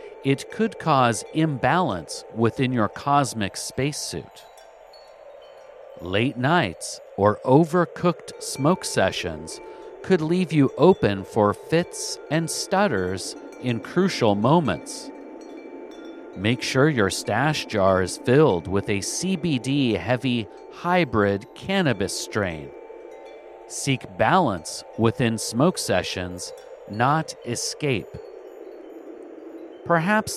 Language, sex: English, male